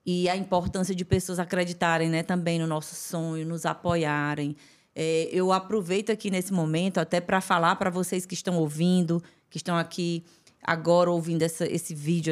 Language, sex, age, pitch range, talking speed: Portuguese, female, 20-39, 170-205 Hz, 170 wpm